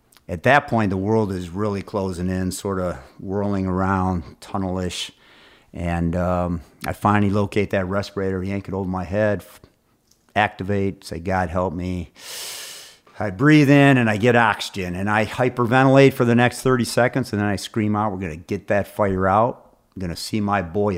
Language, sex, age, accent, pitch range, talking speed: English, male, 50-69, American, 95-115 Hz, 185 wpm